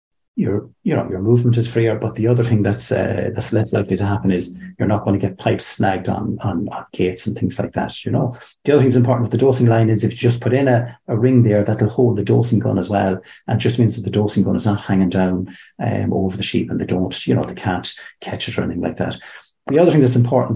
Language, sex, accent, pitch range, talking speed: English, male, Irish, 105-125 Hz, 280 wpm